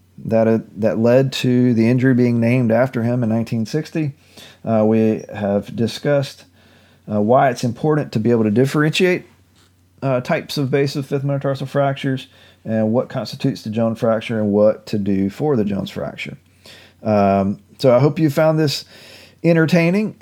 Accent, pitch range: American, 115-145 Hz